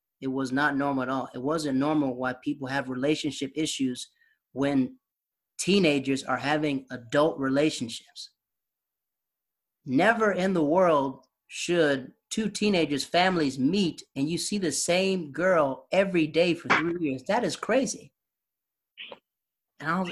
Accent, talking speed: American, 130 wpm